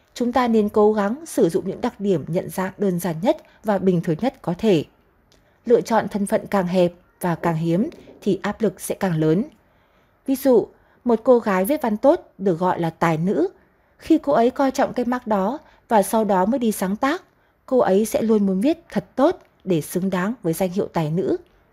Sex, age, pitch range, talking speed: female, 20-39, 185-250 Hz, 220 wpm